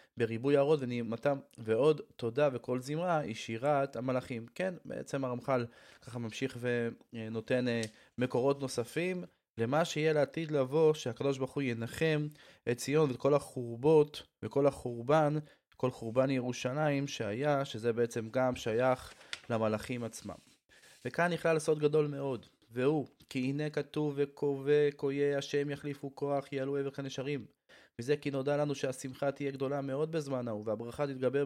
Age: 20-39